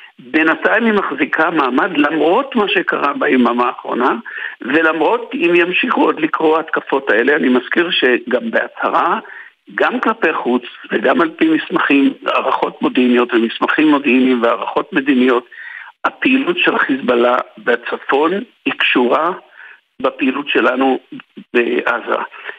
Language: Hebrew